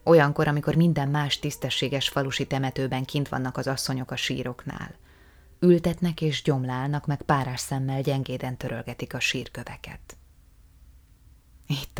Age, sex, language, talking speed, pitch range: 20-39, female, Hungarian, 120 wpm, 125-155 Hz